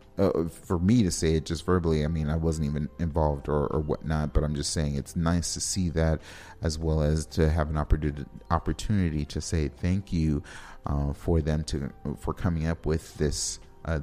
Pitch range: 75-90 Hz